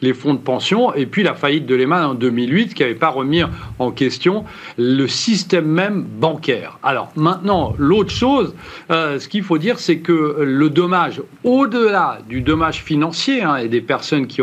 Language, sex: French, male